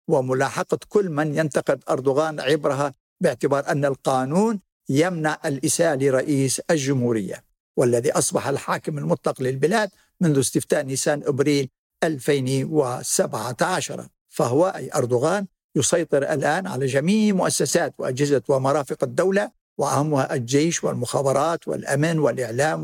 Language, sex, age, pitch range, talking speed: Arabic, male, 60-79, 135-165 Hz, 100 wpm